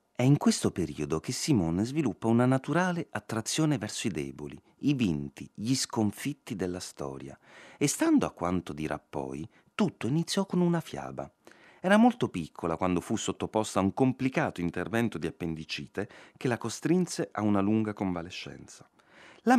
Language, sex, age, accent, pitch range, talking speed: Italian, male, 30-49, native, 80-130 Hz, 155 wpm